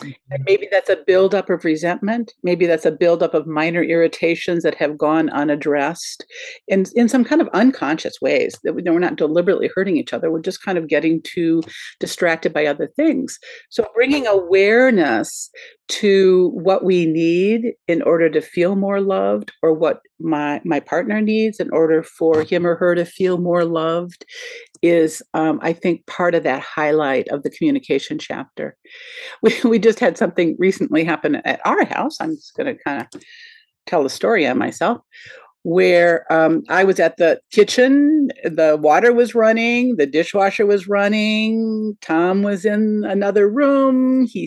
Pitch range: 165-245 Hz